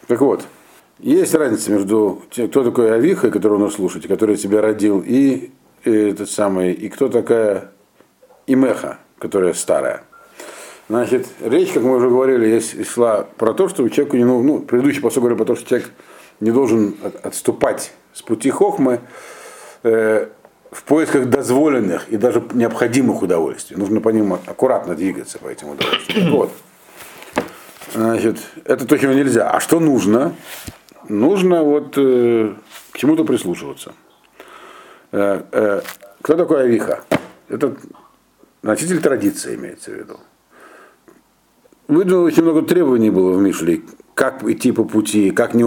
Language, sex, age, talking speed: Russian, male, 50-69, 140 wpm